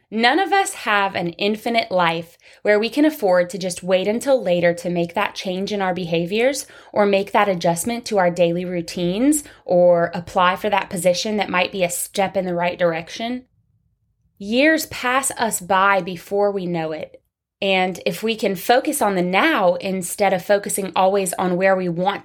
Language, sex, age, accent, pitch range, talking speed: English, female, 20-39, American, 175-225 Hz, 185 wpm